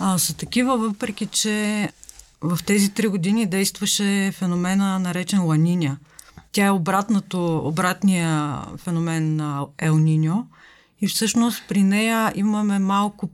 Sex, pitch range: female, 165-195 Hz